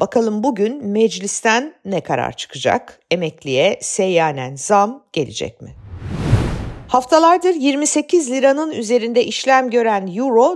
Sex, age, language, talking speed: female, 50-69, Turkish, 100 wpm